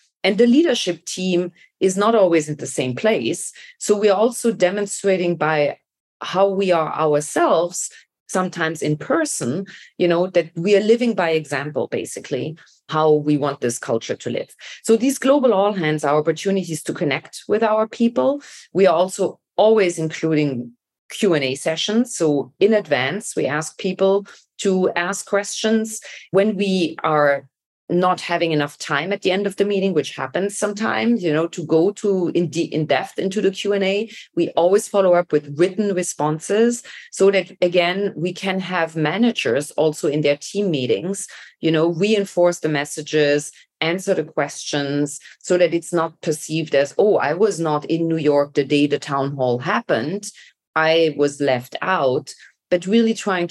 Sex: female